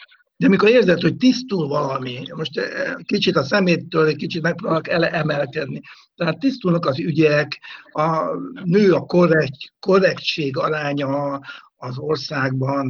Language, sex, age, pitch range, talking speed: Hungarian, male, 60-79, 150-185 Hz, 120 wpm